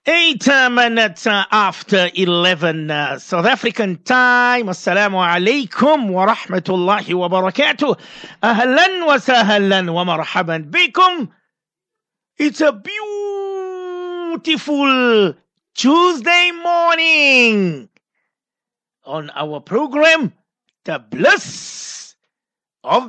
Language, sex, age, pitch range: English, male, 50-69, 180-255 Hz